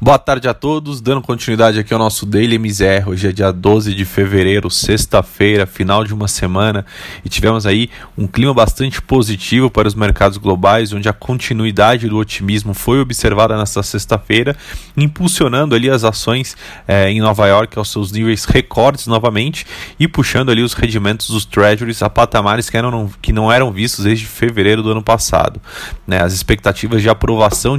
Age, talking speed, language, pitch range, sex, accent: 20-39, 175 wpm, Portuguese, 105-120 Hz, male, Brazilian